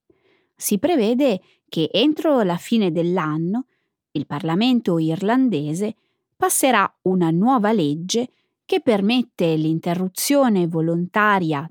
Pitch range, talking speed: 175-275 Hz, 90 wpm